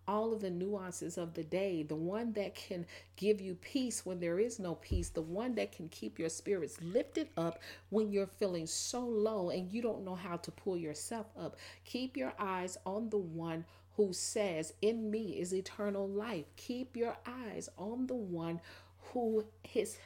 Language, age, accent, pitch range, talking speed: English, 40-59, American, 175-225 Hz, 190 wpm